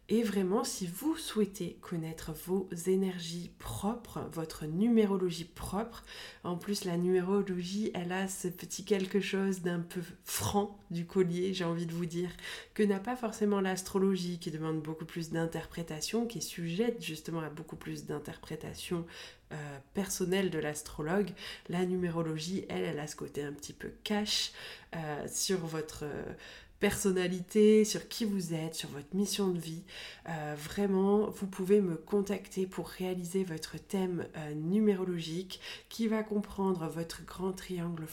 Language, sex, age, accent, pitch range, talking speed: French, female, 20-39, French, 170-205 Hz, 150 wpm